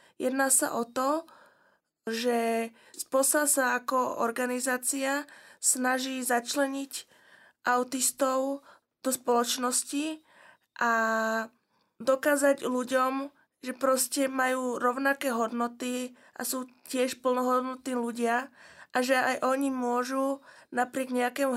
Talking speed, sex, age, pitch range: 95 wpm, female, 20-39, 245-275 Hz